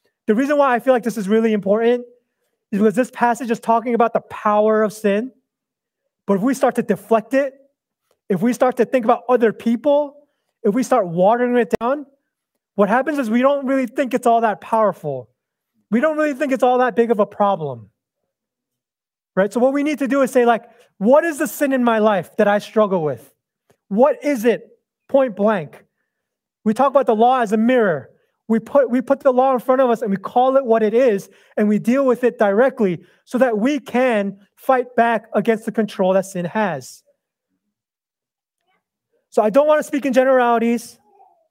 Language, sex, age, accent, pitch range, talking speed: English, male, 30-49, American, 210-270 Hz, 205 wpm